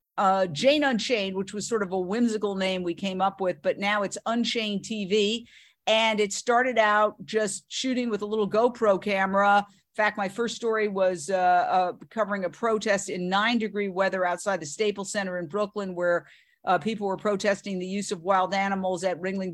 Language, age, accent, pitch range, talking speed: English, 50-69, American, 195-235 Hz, 195 wpm